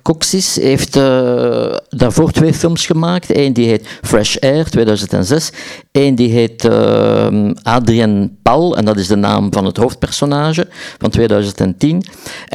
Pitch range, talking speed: 105-135 Hz, 140 wpm